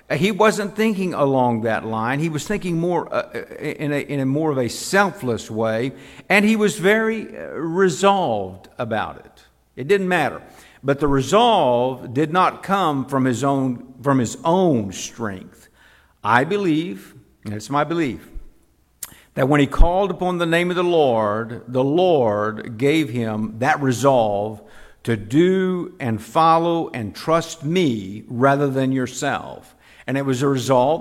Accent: American